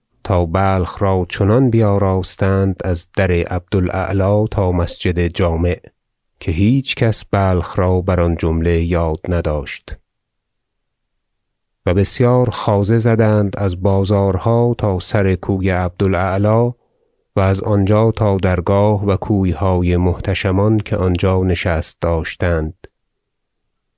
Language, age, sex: Persian, 30-49, male